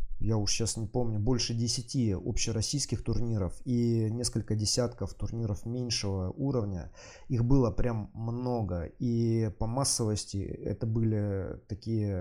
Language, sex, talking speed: Russian, male, 125 wpm